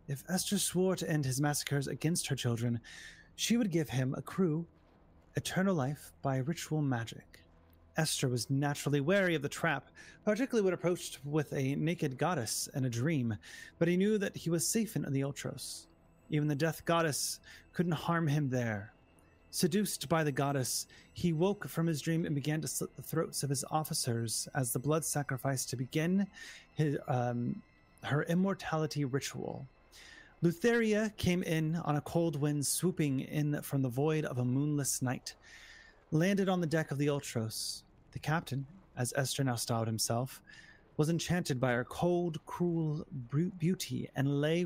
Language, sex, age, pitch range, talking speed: English, male, 30-49, 130-165 Hz, 165 wpm